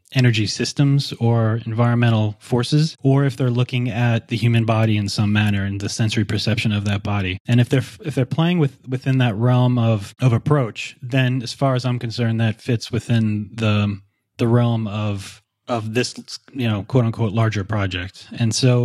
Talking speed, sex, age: 190 wpm, male, 30-49